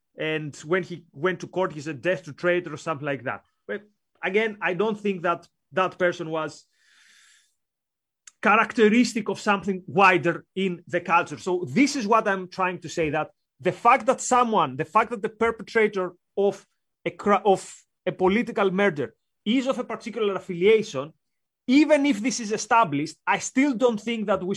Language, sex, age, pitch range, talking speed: English, male, 30-49, 180-230 Hz, 175 wpm